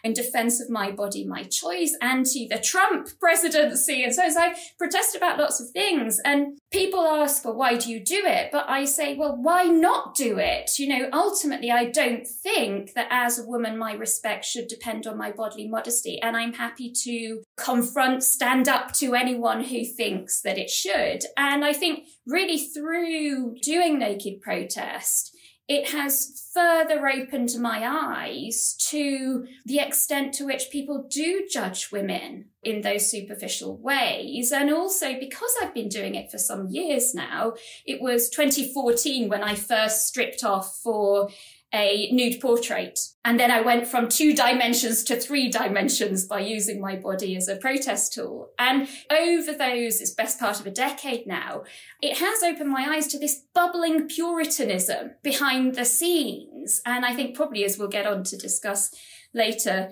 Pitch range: 230-295 Hz